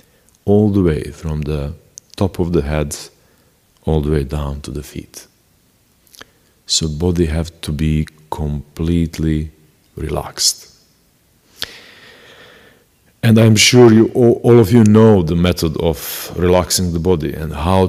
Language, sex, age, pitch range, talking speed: English, male, 40-59, 75-90 Hz, 130 wpm